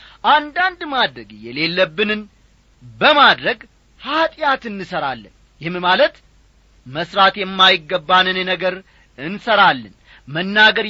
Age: 40-59